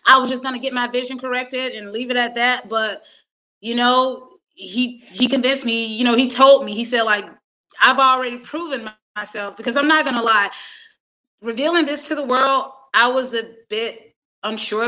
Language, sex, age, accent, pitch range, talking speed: English, female, 20-39, American, 205-255 Hz, 200 wpm